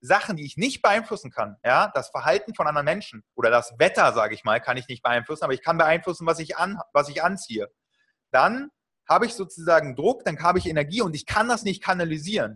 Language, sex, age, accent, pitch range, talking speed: German, male, 30-49, German, 145-200 Hz, 225 wpm